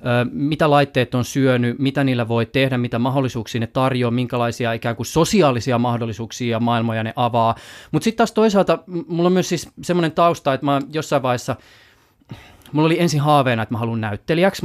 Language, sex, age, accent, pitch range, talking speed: Finnish, male, 20-39, native, 120-145 Hz, 175 wpm